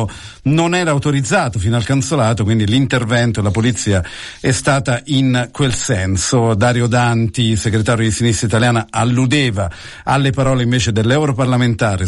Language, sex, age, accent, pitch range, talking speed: Italian, male, 50-69, native, 110-135 Hz, 130 wpm